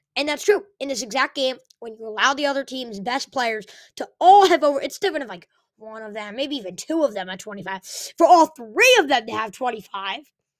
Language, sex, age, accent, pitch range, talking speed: English, female, 20-39, American, 230-310 Hz, 230 wpm